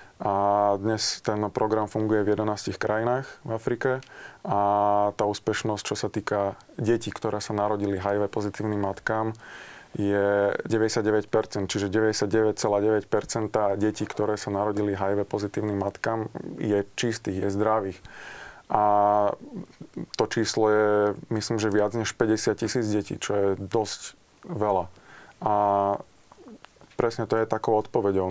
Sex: male